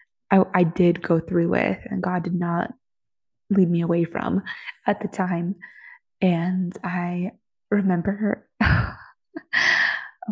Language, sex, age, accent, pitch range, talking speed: English, female, 20-39, American, 175-195 Hz, 120 wpm